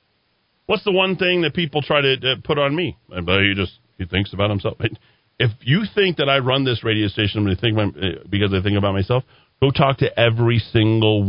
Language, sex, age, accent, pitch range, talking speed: English, male, 40-59, American, 105-165 Hz, 190 wpm